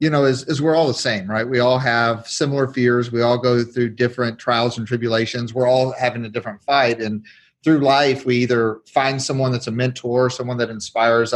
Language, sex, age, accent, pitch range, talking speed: English, male, 40-59, American, 110-130 Hz, 215 wpm